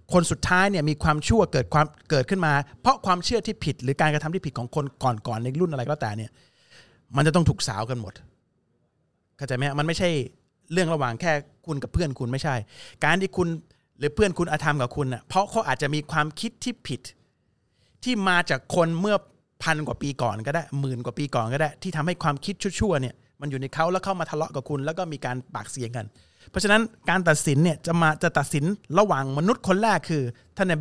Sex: male